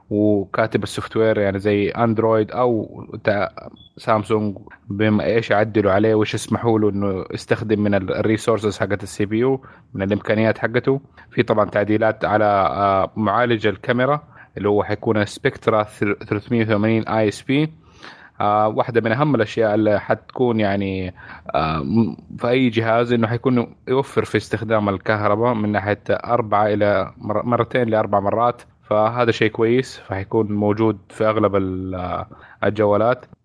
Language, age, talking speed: Arabic, 20-39, 125 wpm